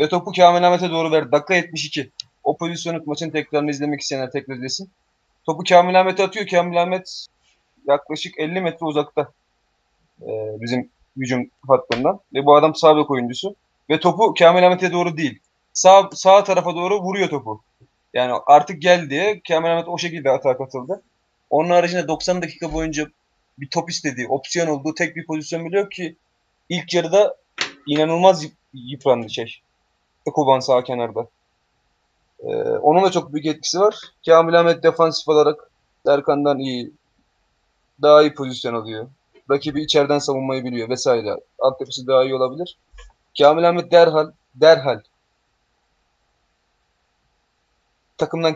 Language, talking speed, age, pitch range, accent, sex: Turkish, 140 wpm, 30-49, 135-175 Hz, native, male